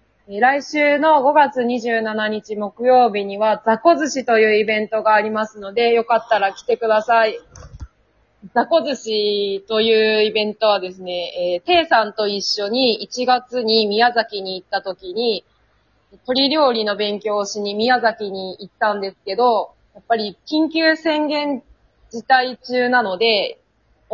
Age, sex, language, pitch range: 20-39, female, Japanese, 205-270 Hz